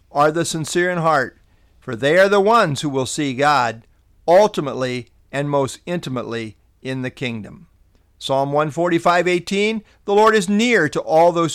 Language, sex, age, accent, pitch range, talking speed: English, male, 50-69, American, 130-185 Hz, 155 wpm